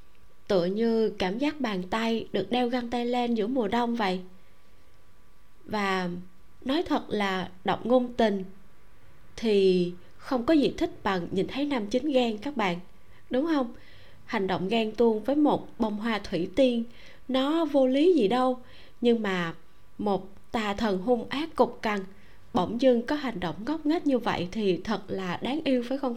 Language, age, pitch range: Vietnamese, 20-39, 190-245 Hz